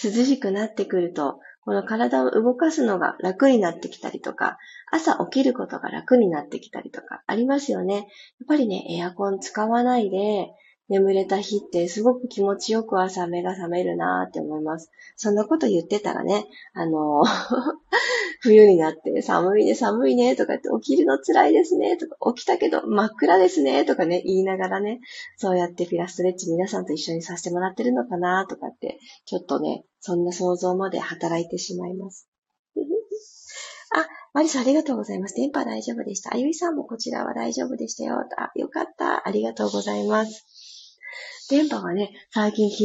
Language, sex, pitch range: Japanese, female, 180-260 Hz